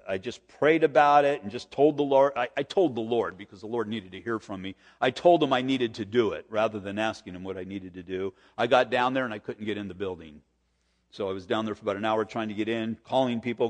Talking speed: 290 wpm